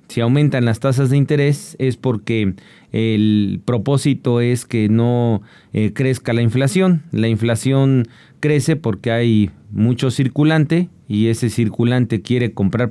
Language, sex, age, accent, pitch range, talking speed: Spanish, male, 40-59, Mexican, 115-140 Hz, 135 wpm